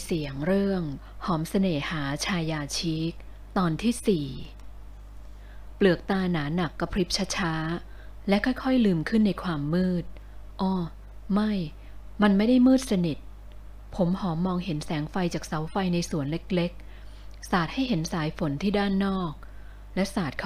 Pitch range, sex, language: 145-195 Hz, female, Thai